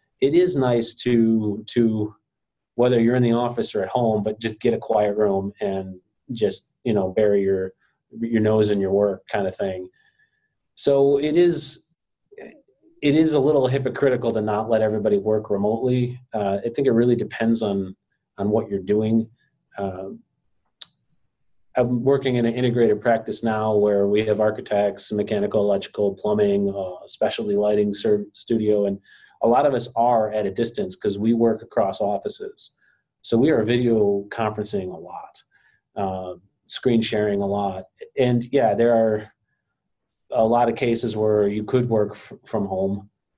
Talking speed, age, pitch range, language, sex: 165 wpm, 30-49, 105-125 Hz, English, male